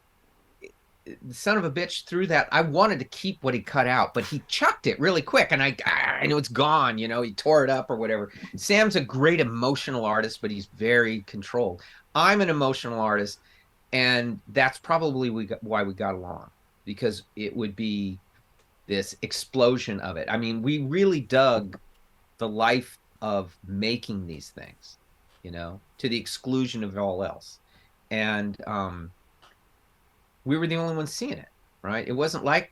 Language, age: English, 40-59